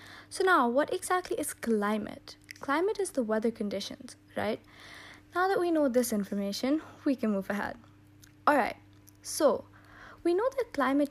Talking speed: 155 wpm